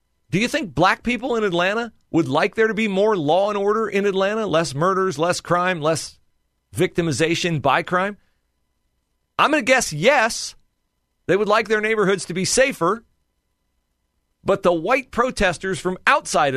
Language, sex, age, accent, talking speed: English, male, 40-59, American, 165 wpm